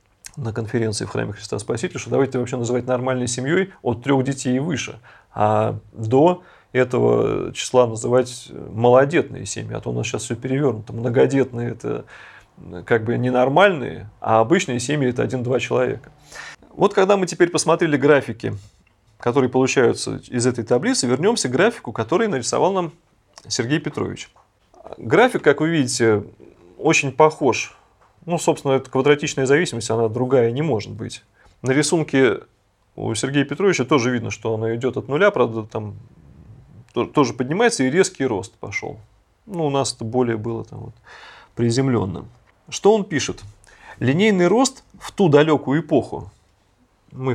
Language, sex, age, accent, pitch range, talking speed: Russian, male, 30-49, native, 110-145 Hz, 145 wpm